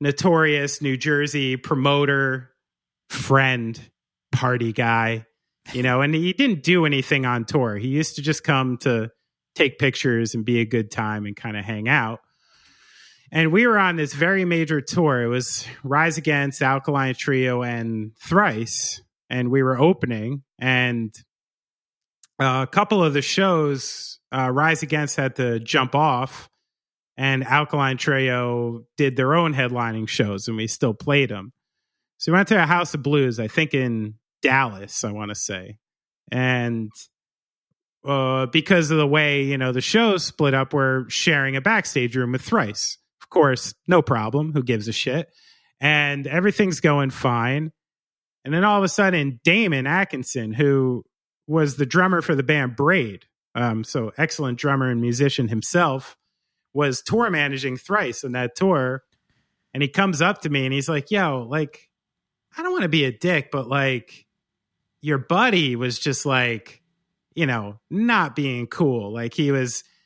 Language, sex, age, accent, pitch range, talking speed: English, male, 30-49, American, 125-155 Hz, 165 wpm